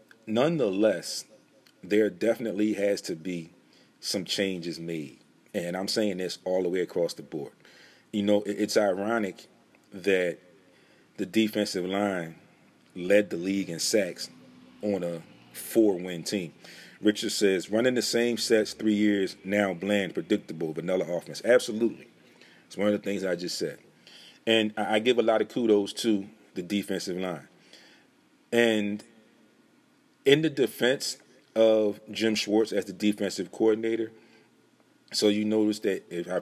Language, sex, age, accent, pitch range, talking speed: English, male, 40-59, American, 95-110 Hz, 140 wpm